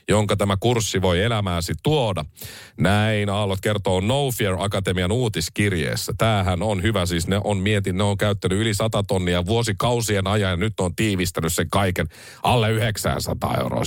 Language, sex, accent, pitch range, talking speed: Finnish, male, native, 95-125 Hz, 160 wpm